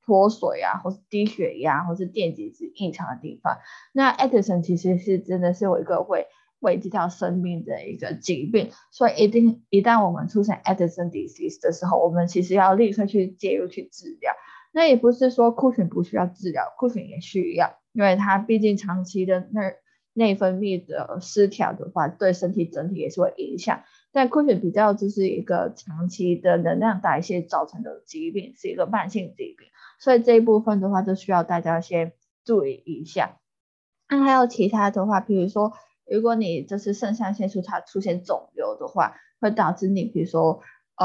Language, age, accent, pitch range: Chinese, 20-39, native, 180-230 Hz